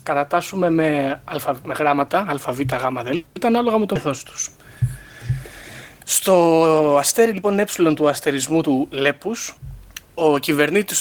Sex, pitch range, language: male, 130-175 Hz, Greek